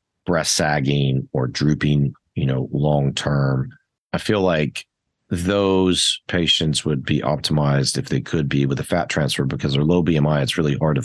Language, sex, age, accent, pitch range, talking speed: English, male, 40-59, American, 70-80 Hz, 175 wpm